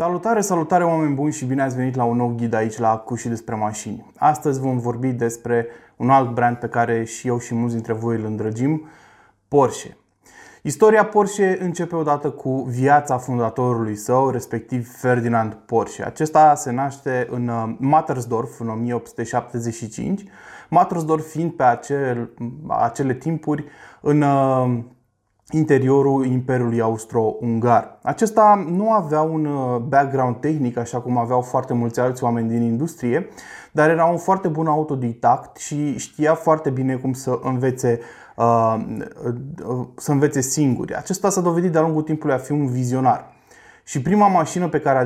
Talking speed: 145 wpm